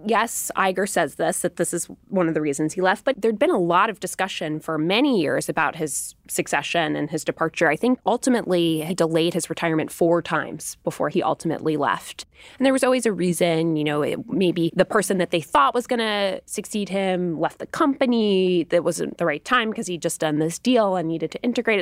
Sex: female